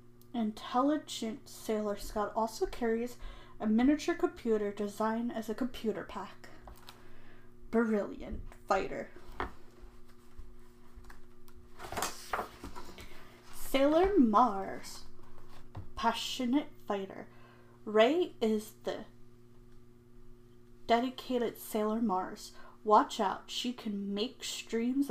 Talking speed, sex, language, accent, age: 75 wpm, female, English, American, 10-29